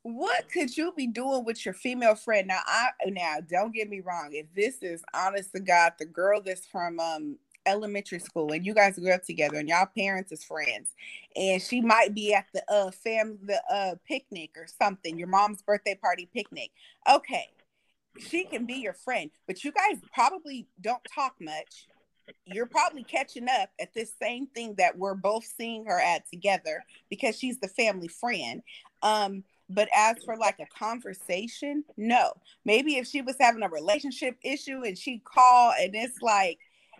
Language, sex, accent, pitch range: English, female, American, 190-255 Hz